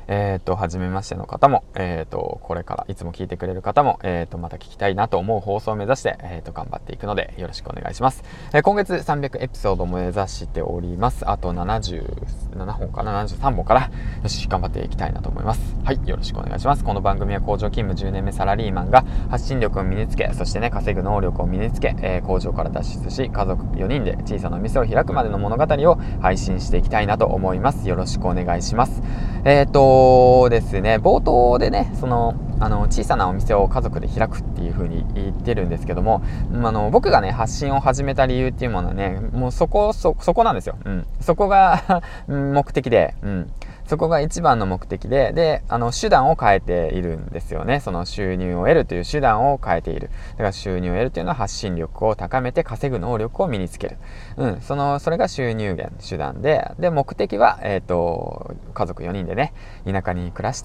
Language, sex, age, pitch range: Japanese, male, 20-39, 90-125 Hz